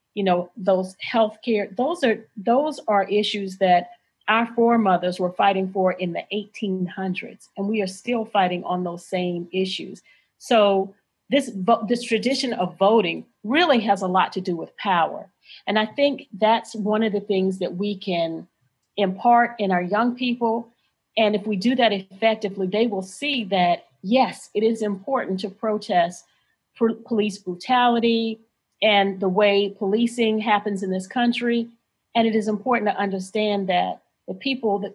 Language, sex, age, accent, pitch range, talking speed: English, female, 40-59, American, 190-230 Hz, 160 wpm